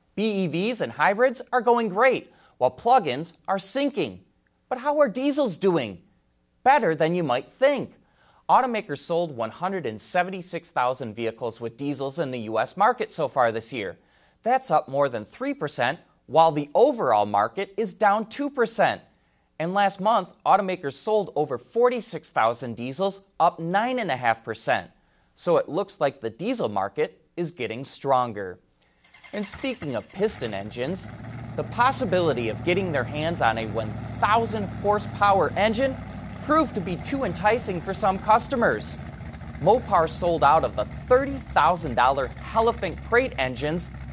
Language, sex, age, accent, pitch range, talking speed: English, male, 30-49, American, 135-220 Hz, 135 wpm